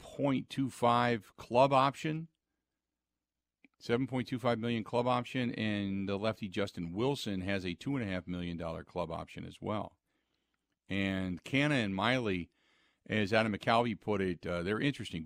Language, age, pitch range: English, 50-69, 95-125 Hz